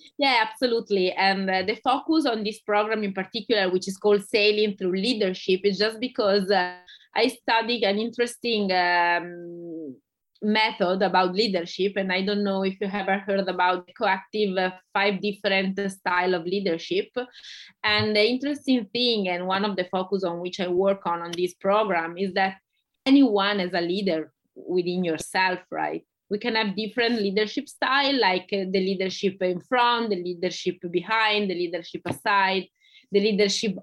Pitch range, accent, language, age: 190-225 Hz, Italian, English, 20-39